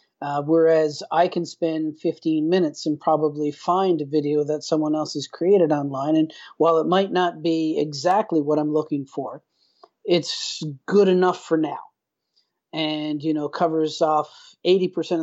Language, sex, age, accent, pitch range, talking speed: English, male, 40-59, American, 145-160 Hz, 160 wpm